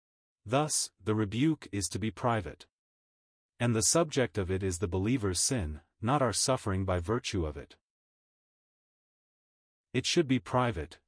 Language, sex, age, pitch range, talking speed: English, male, 40-59, 95-120 Hz, 145 wpm